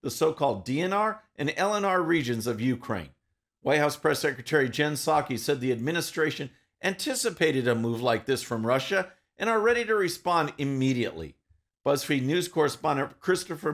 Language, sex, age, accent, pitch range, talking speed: English, male, 50-69, American, 130-190 Hz, 150 wpm